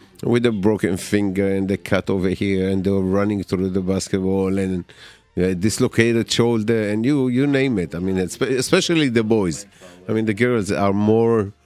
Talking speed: 190 wpm